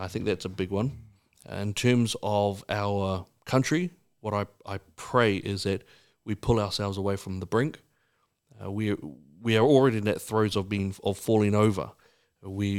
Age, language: 30-49, English